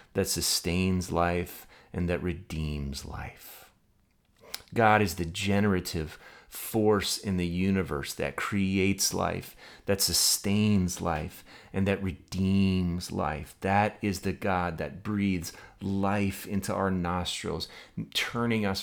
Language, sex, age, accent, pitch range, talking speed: English, male, 30-49, American, 90-105 Hz, 120 wpm